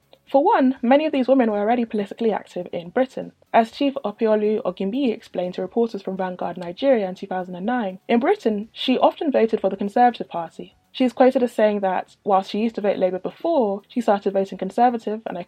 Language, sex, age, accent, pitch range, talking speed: English, female, 20-39, British, 195-245 Hz, 200 wpm